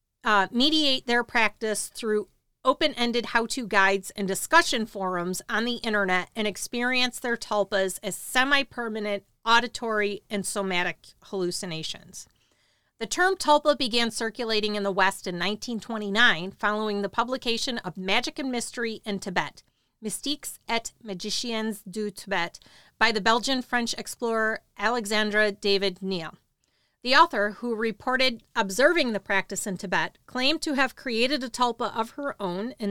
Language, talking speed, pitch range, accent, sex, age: English, 135 wpm, 195-245 Hz, American, female, 40-59